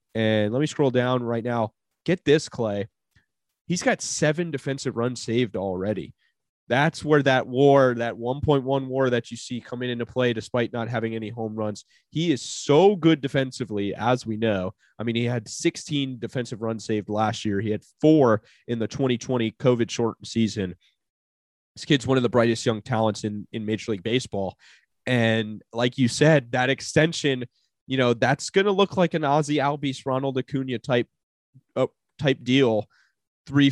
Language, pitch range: English, 115-140 Hz